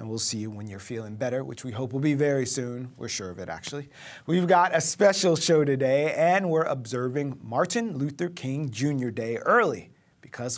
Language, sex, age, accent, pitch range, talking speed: English, male, 40-59, American, 120-170 Hz, 205 wpm